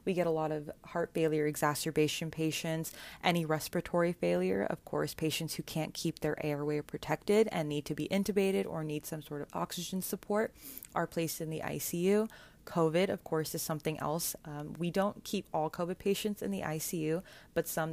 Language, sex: English, female